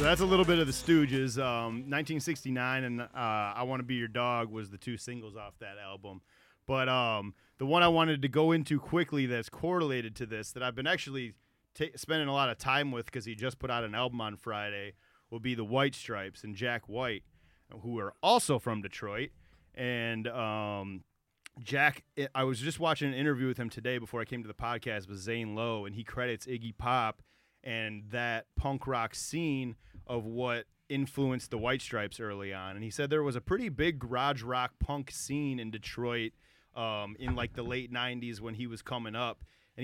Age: 30-49